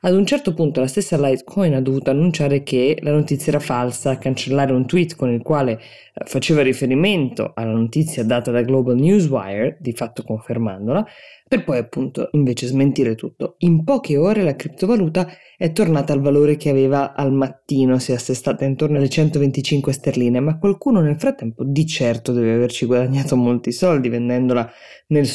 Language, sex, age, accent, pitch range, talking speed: Italian, female, 20-39, native, 130-170 Hz, 170 wpm